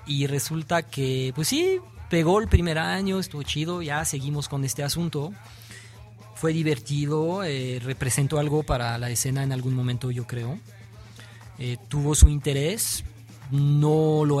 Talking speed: 145 wpm